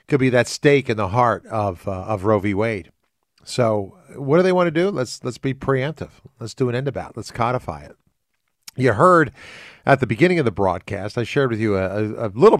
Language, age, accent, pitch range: English, 50-69, American, 105-130 Hz